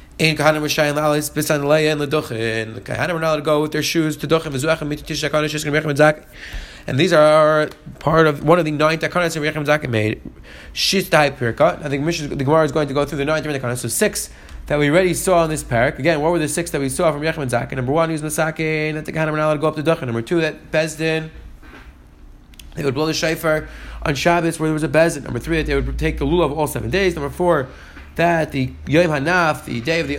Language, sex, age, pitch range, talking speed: English, male, 30-49, 140-175 Hz, 250 wpm